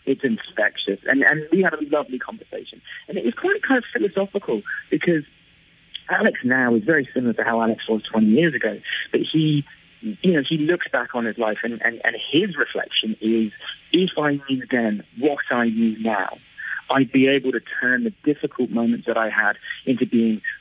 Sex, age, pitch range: male, 40-59, 115-170 Hz